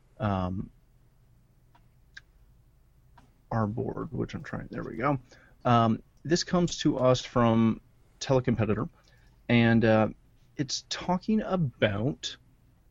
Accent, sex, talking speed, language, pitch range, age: American, male, 100 wpm, English, 105-125 Hz, 30-49